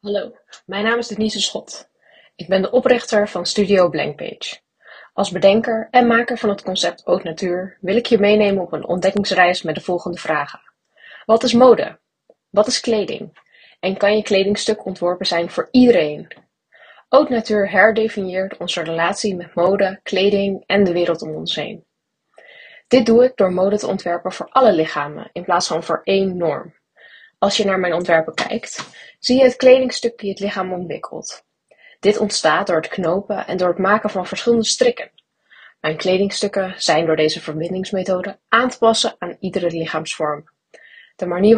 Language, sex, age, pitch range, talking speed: Dutch, female, 20-39, 180-220 Hz, 170 wpm